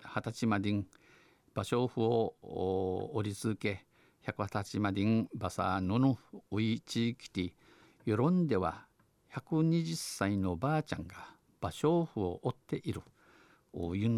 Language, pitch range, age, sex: Japanese, 100-125 Hz, 50-69, male